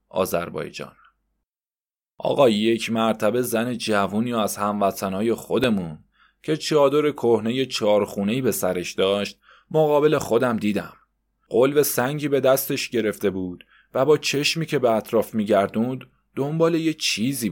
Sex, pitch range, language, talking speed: male, 110-150 Hz, Persian, 120 wpm